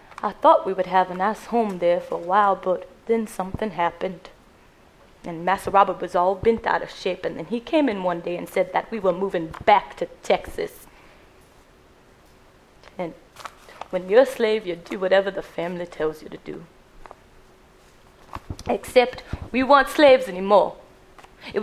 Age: 20-39